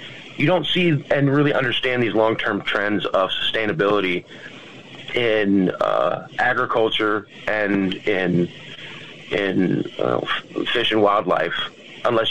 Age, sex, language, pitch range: 30-49, male, English, 95-135 Hz